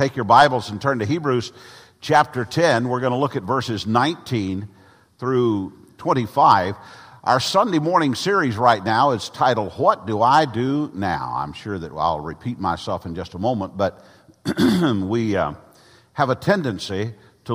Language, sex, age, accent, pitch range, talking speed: English, male, 50-69, American, 100-125 Hz, 165 wpm